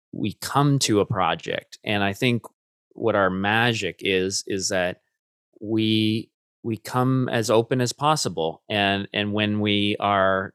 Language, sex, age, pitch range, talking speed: English, male, 20-39, 100-130 Hz, 150 wpm